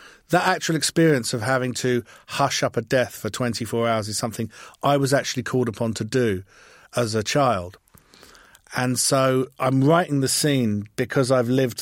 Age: 50-69